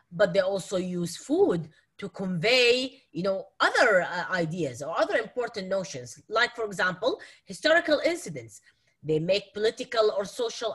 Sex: female